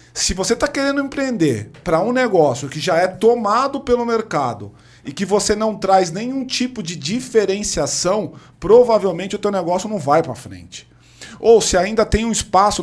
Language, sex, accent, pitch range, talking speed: Portuguese, male, Brazilian, 145-195 Hz, 175 wpm